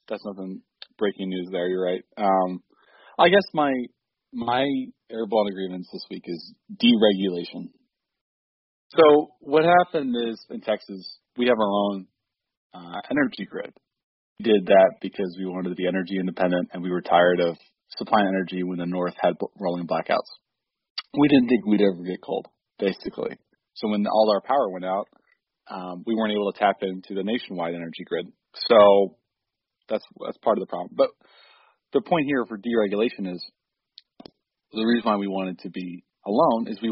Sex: male